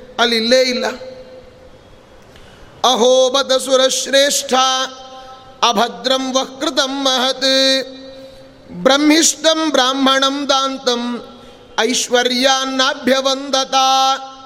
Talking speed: 45 wpm